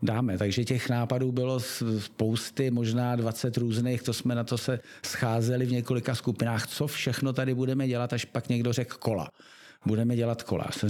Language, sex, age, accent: Czech, male, 50-69, native